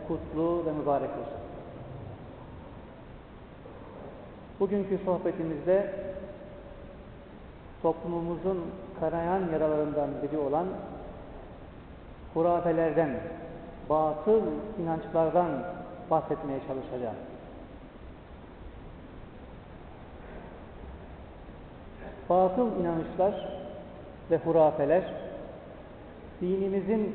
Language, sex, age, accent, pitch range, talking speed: Turkish, male, 50-69, native, 155-210 Hz, 45 wpm